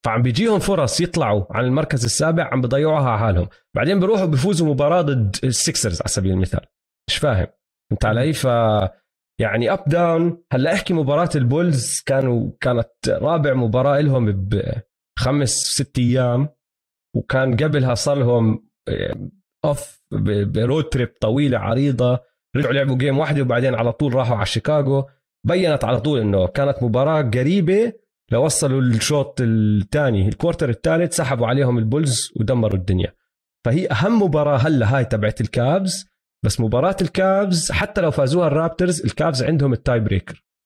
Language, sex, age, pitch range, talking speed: Arabic, male, 30-49, 110-150 Hz, 140 wpm